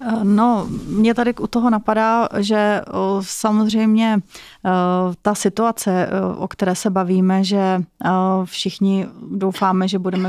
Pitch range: 185-200 Hz